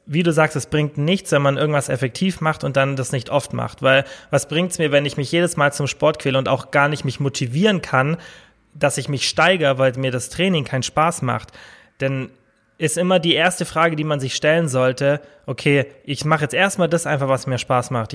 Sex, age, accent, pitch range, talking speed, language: male, 20-39, German, 130-155 Hz, 230 wpm, German